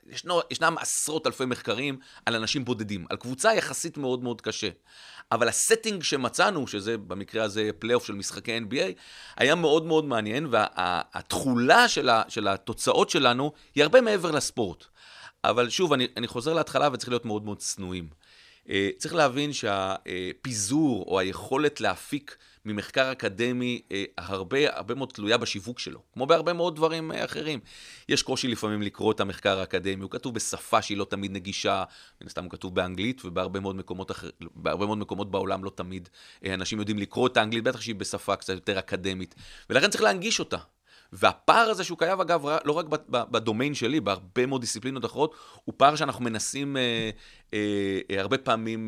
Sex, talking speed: male, 160 wpm